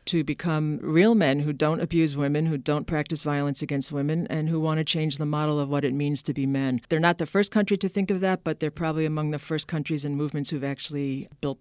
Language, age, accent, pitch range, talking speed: English, 50-69, American, 150-170 Hz, 255 wpm